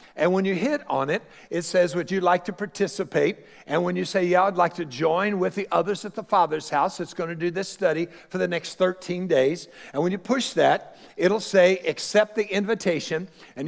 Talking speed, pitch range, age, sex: 225 wpm, 175-220 Hz, 60-79, male